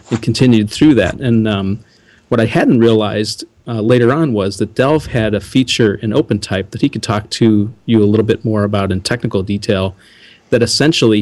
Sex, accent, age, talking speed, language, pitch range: male, American, 40-59, 200 wpm, English, 105-120 Hz